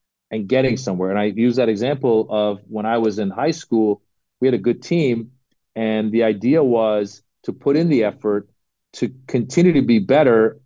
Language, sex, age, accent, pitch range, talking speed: English, male, 40-59, American, 110-140 Hz, 190 wpm